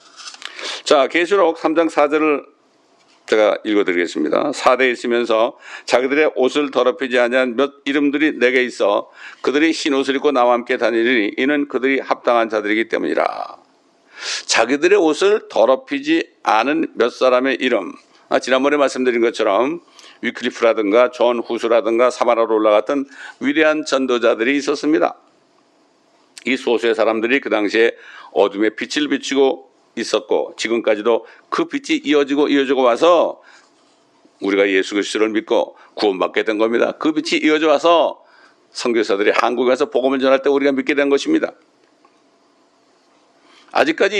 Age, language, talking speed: 60-79, English, 115 wpm